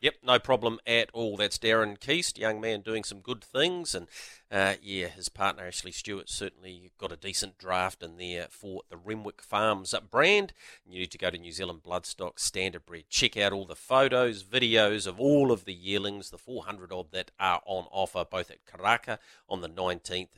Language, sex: English, male